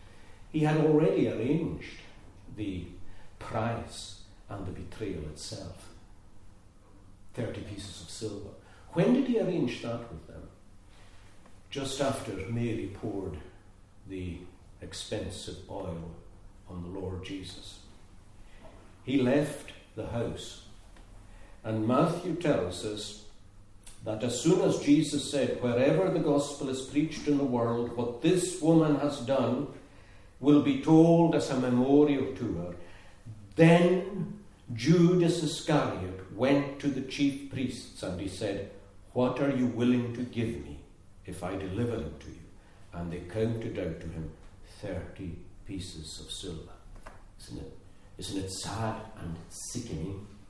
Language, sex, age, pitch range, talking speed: English, male, 50-69, 95-120 Hz, 130 wpm